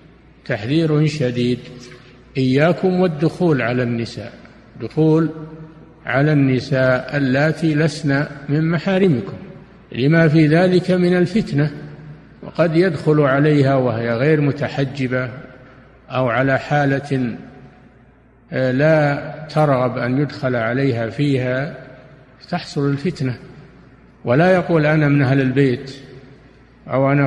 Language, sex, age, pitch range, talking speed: Arabic, male, 50-69, 130-160 Hz, 95 wpm